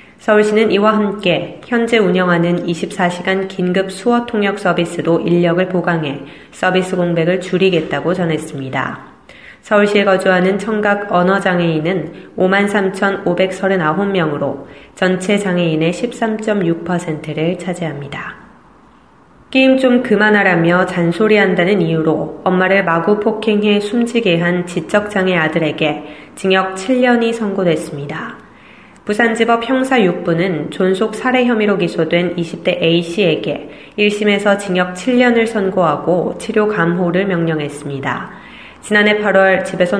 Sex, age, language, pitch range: female, 20-39, Korean, 170-210 Hz